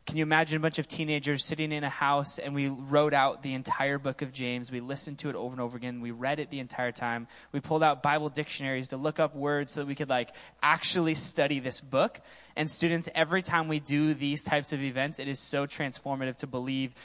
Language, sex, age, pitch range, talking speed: English, male, 10-29, 130-155 Hz, 240 wpm